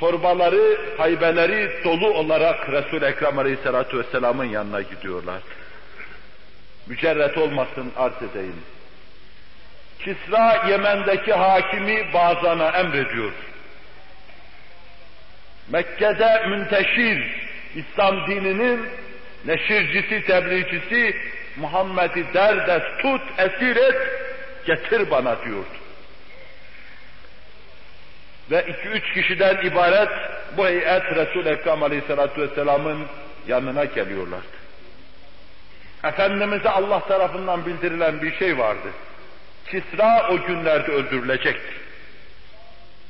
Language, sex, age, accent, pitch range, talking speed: Turkish, male, 60-79, native, 155-195 Hz, 80 wpm